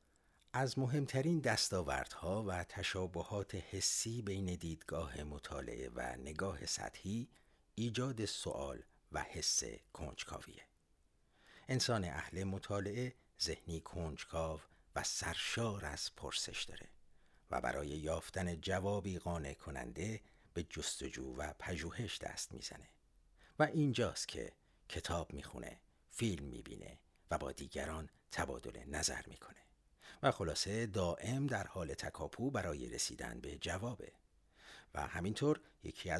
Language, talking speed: Persian, 110 wpm